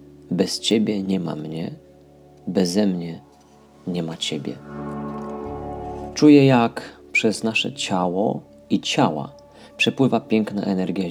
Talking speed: 110 wpm